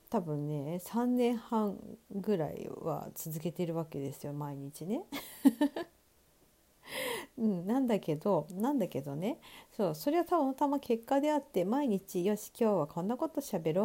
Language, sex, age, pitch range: Japanese, female, 50-69, 165-245 Hz